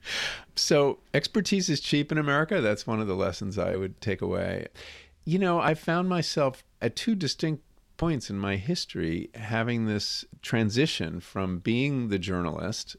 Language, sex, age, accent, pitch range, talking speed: English, male, 50-69, American, 95-125 Hz, 155 wpm